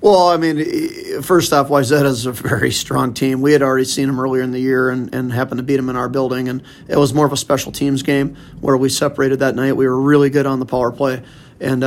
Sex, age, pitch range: male, 30-49, 130-145 Hz